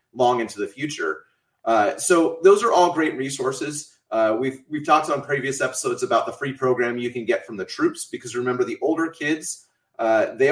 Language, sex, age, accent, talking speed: English, male, 30-49, American, 200 wpm